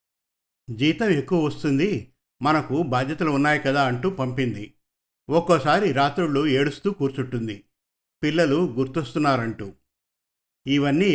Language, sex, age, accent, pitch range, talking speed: Telugu, male, 50-69, native, 125-150 Hz, 85 wpm